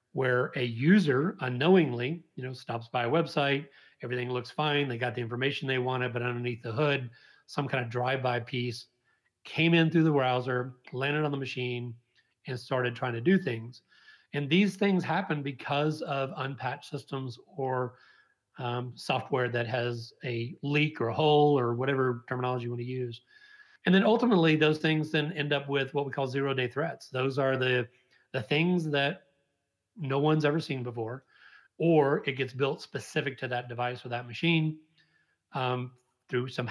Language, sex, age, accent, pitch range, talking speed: English, male, 40-59, American, 125-145 Hz, 175 wpm